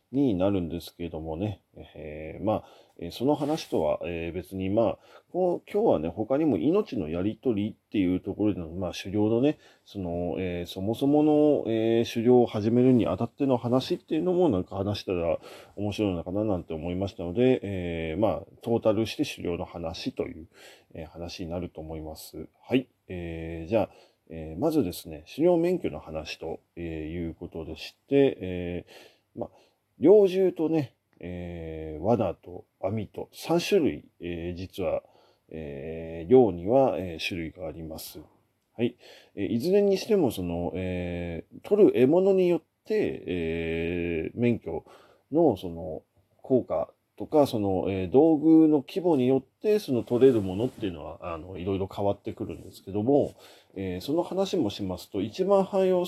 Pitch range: 85-130 Hz